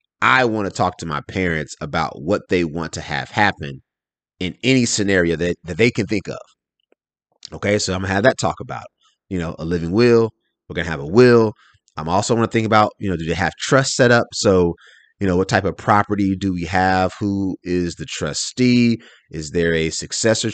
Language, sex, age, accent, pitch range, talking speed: English, male, 30-49, American, 85-110 Hz, 220 wpm